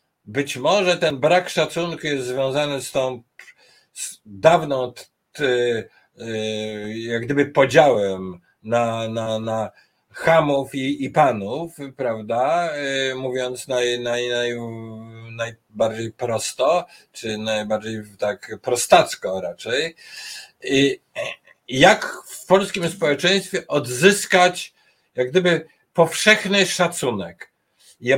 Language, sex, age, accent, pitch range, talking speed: Polish, male, 50-69, native, 125-180 Hz, 105 wpm